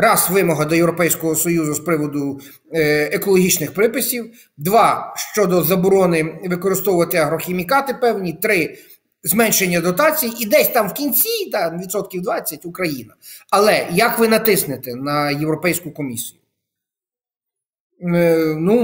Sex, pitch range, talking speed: male, 160-220 Hz, 110 wpm